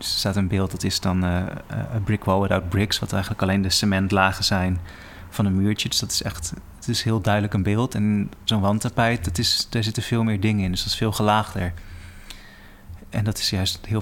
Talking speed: 225 wpm